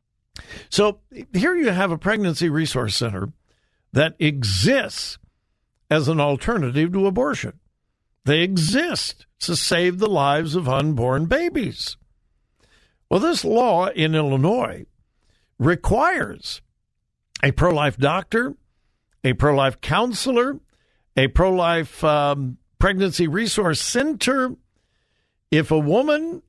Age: 60-79